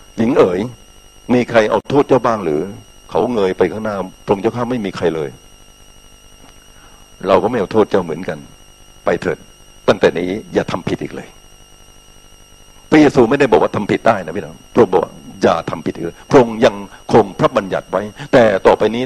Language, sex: Thai, male